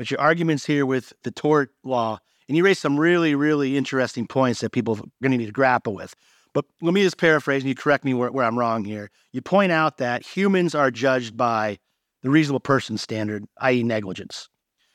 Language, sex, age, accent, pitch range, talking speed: English, male, 40-59, American, 125-155 Hz, 215 wpm